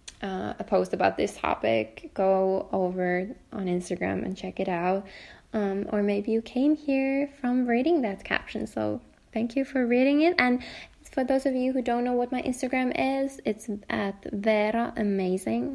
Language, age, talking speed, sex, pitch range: English, 10-29, 175 wpm, female, 195-245 Hz